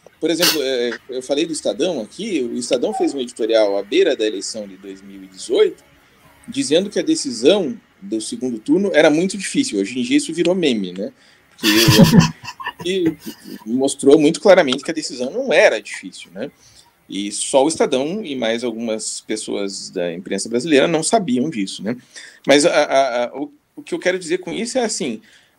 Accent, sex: Brazilian, male